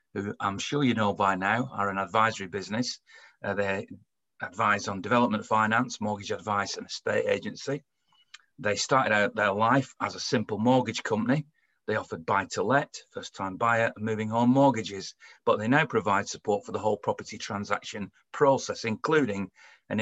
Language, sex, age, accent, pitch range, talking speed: English, male, 40-59, British, 105-125 Hz, 160 wpm